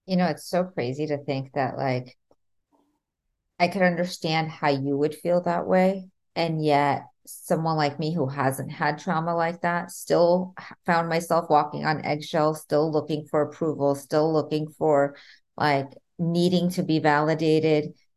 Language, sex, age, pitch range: English, female, 30-49, 145-175 Hz